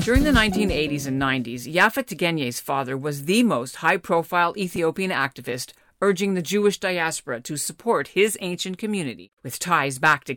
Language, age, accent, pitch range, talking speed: English, 50-69, American, 135-195 Hz, 155 wpm